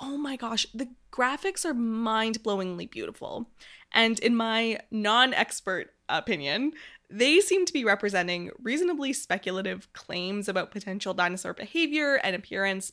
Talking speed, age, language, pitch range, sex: 135 wpm, 20-39, English, 190-245 Hz, female